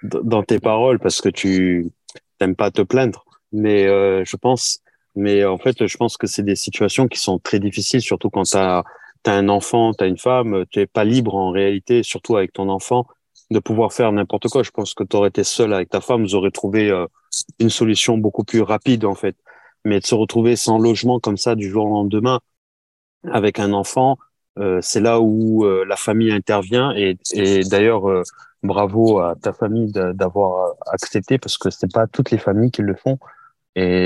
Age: 30-49